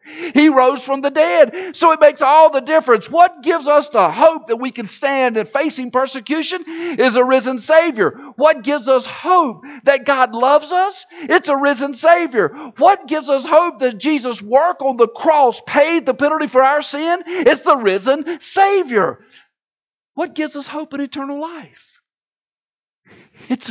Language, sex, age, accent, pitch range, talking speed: English, male, 50-69, American, 245-315 Hz, 170 wpm